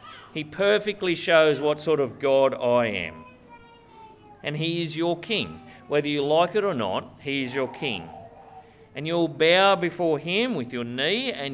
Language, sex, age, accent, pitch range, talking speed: English, male, 40-59, Australian, 145-200 Hz, 170 wpm